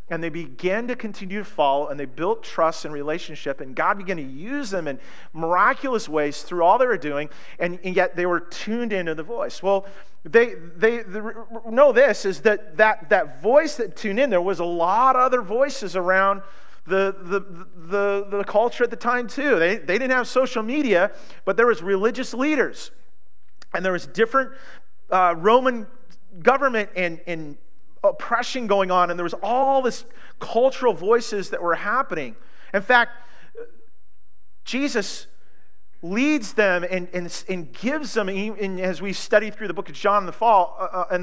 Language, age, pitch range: English, 40-59, 175-235 Hz